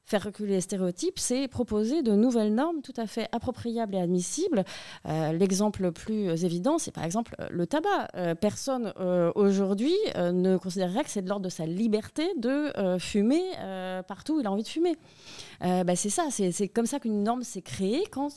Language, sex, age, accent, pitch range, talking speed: French, female, 30-49, French, 185-235 Hz, 205 wpm